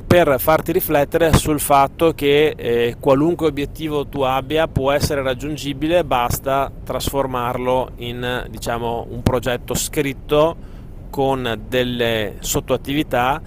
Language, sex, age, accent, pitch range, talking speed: Italian, male, 30-49, native, 120-150 Hz, 105 wpm